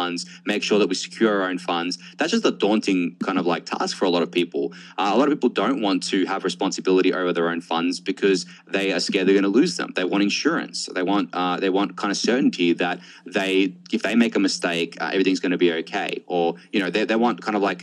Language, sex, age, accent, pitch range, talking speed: English, male, 20-39, Australian, 90-105 Hz, 265 wpm